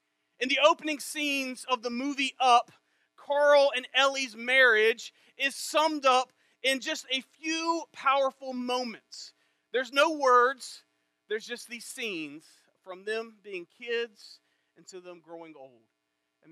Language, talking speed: English, 140 wpm